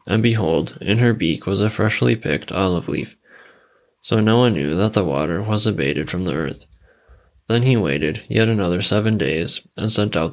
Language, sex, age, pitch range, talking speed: English, male, 20-39, 85-110 Hz, 190 wpm